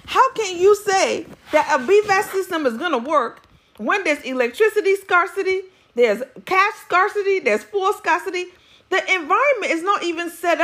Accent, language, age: American, English, 40-59